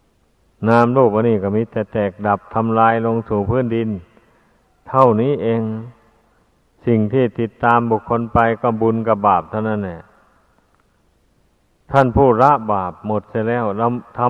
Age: 60-79